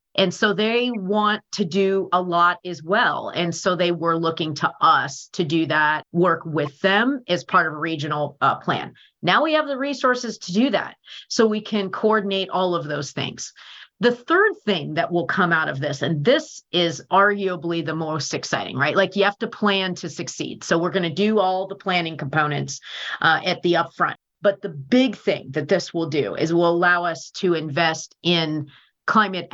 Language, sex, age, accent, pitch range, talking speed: English, female, 40-59, American, 155-195 Hz, 200 wpm